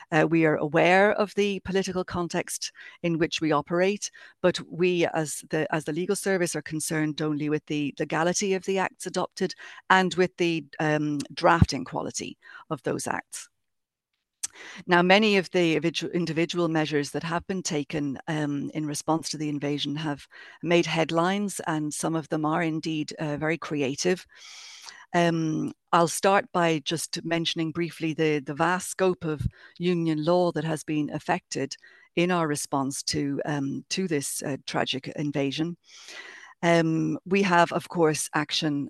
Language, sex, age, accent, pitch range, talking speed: English, female, 50-69, British, 150-175 Hz, 155 wpm